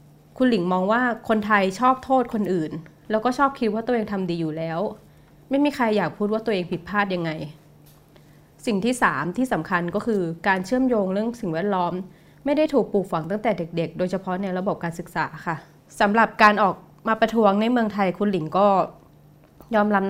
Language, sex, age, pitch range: Thai, female, 20-39, 180-225 Hz